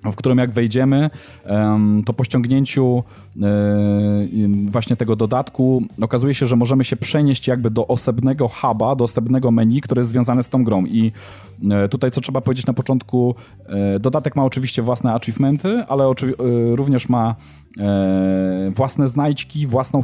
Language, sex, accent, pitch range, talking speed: Polish, male, native, 105-130 Hz, 145 wpm